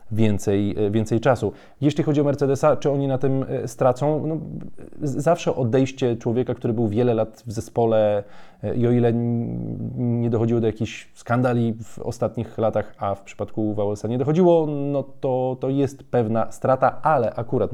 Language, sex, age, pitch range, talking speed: Polish, male, 20-39, 105-125 Hz, 155 wpm